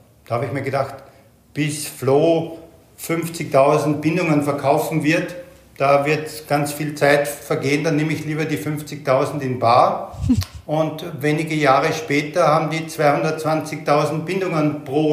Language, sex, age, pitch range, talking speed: German, male, 50-69, 140-160 Hz, 135 wpm